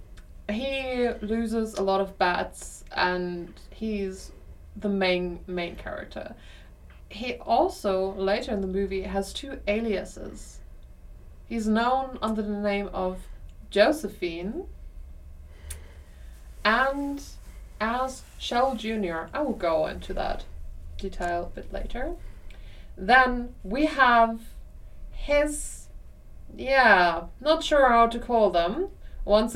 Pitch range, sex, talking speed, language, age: 180-245 Hz, female, 110 wpm, English, 20-39